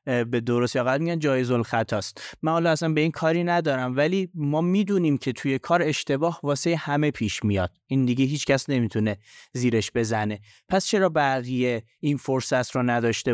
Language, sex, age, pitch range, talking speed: Persian, male, 30-49, 120-155 Hz, 165 wpm